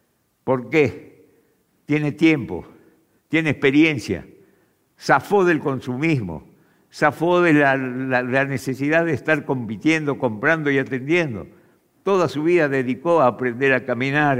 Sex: male